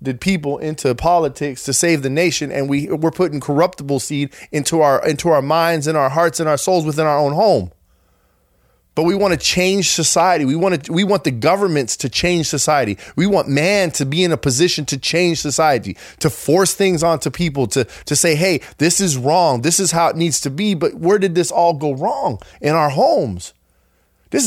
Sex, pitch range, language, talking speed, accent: male, 145-235 Hz, English, 205 wpm, American